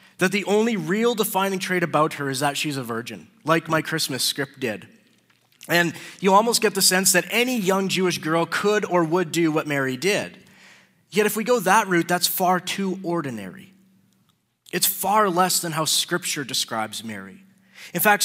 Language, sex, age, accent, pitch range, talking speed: English, male, 20-39, American, 150-195 Hz, 185 wpm